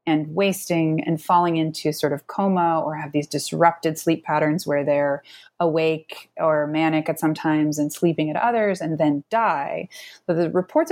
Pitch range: 155-180 Hz